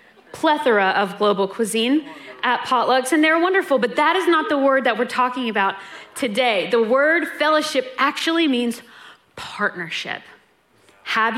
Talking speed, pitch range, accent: 140 wpm, 200-260 Hz, American